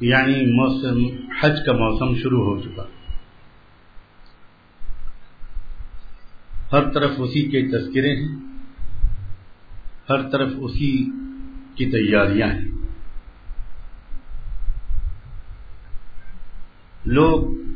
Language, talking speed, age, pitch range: English, 70 wpm, 50-69, 95-135 Hz